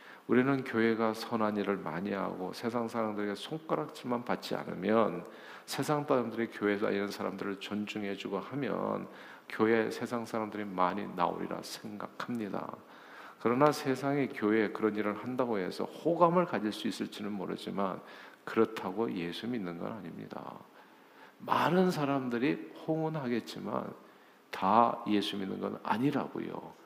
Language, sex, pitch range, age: Korean, male, 105-135 Hz, 50-69